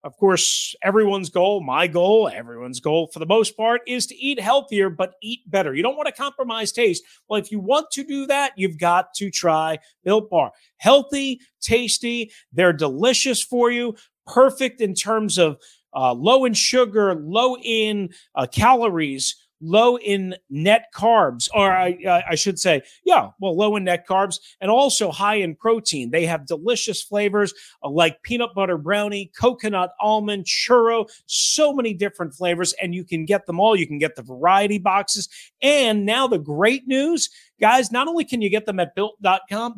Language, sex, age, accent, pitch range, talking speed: English, male, 40-59, American, 180-245 Hz, 175 wpm